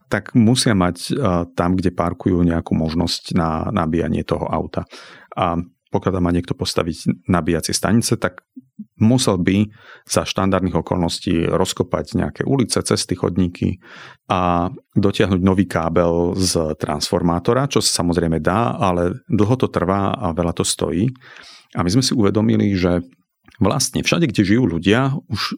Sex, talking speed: male, 140 wpm